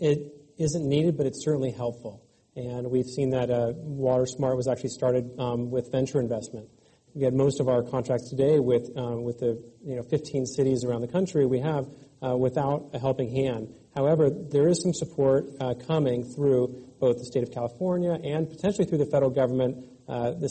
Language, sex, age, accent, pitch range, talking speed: English, male, 40-59, American, 125-145 Hz, 195 wpm